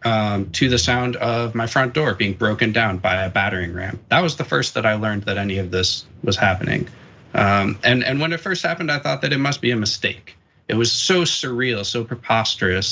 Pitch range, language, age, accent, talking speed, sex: 100-130 Hz, English, 20-39, American, 230 wpm, male